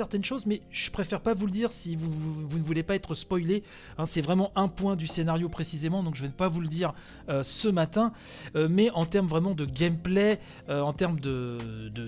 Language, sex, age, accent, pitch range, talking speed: French, male, 30-49, French, 140-185 Hz, 235 wpm